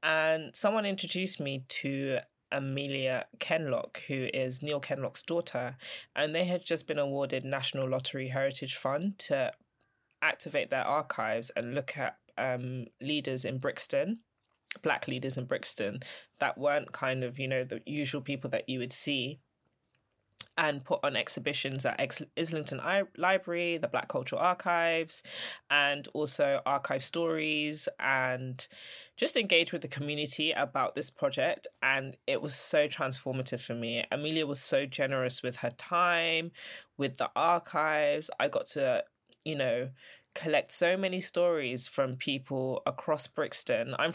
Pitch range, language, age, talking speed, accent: 130-165 Hz, English, 20-39, 145 wpm, British